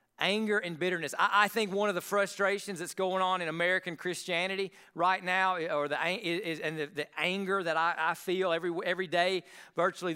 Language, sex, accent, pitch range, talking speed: English, male, American, 175-205 Hz, 195 wpm